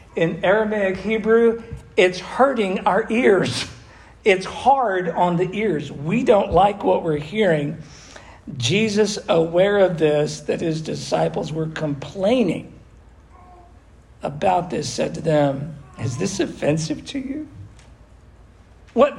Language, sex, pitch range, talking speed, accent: English, male, 140-190 Hz, 120 wpm, American